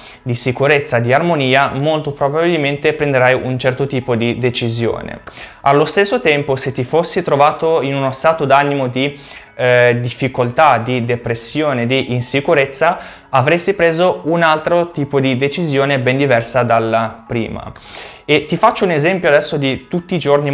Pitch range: 125-150 Hz